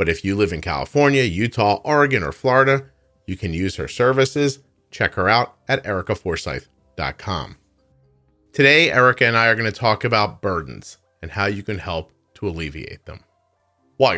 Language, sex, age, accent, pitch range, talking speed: English, male, 40-59, American, 90-125 Hz, 165 wpm